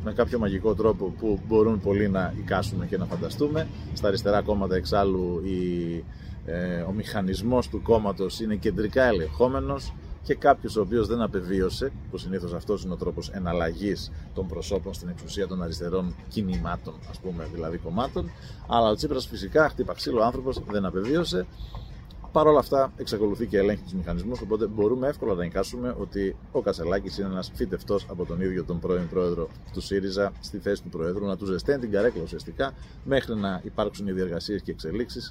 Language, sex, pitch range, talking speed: Greek, male, 90-115 Hz, 175 wpm